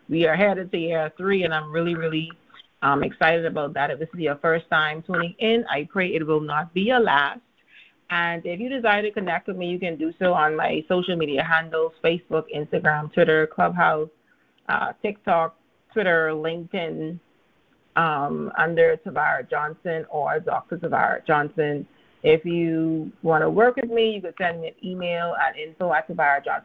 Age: 30-49